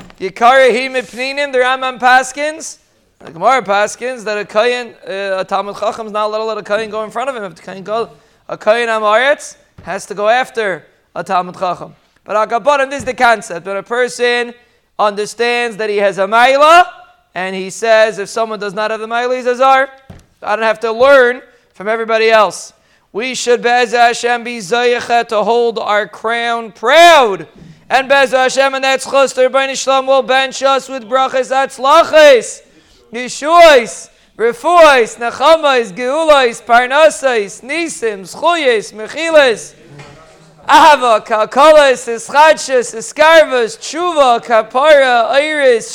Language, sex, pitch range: English, male, 220-280 Hz